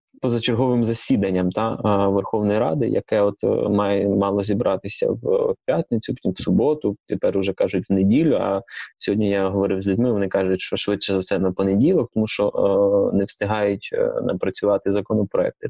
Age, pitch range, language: 20-39, 95-115 Hz, Ukrainian